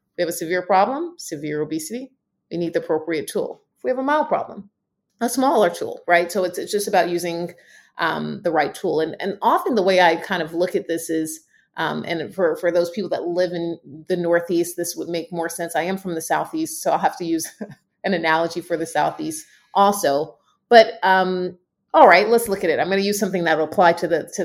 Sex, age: female, 30-49